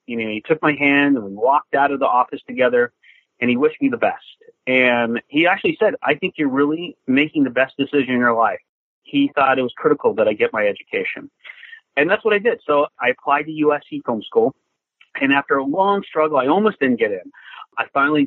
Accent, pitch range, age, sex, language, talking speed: American, 135-205 Hz, 40-59, male, English, 225 wpm